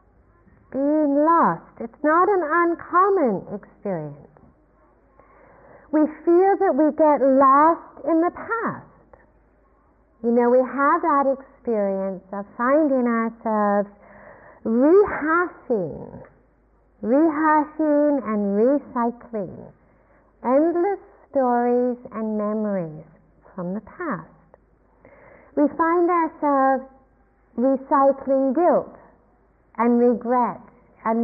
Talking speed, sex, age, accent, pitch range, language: 85 wpm, female, 50-69, American, 230-305 Hz, English